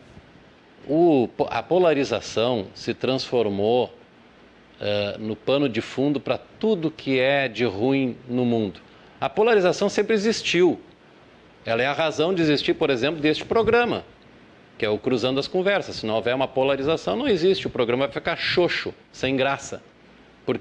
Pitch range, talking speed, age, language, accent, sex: 130-170 Hz, 150 wpm, 50-69, Portuguese, Brazilian, male